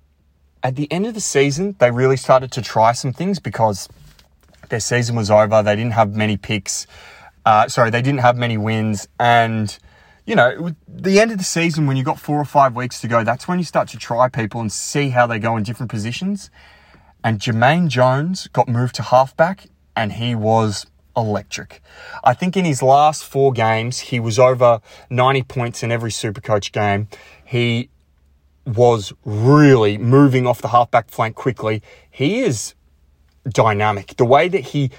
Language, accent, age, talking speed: English, Australian, 20-39, 185 wpm